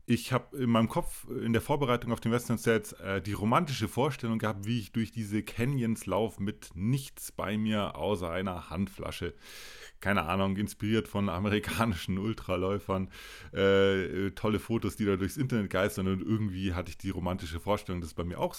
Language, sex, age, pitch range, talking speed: German, male, 30-49, 90-110 Hz, 175 wpm